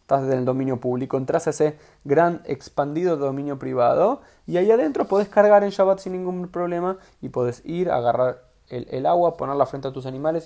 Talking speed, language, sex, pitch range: 200 wpm, Spanish, male, 135-185 Hz